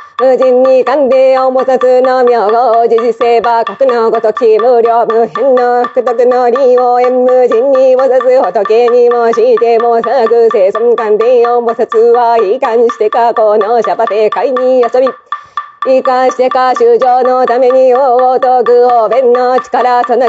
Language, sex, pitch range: Japanese, female, 230-255 Hz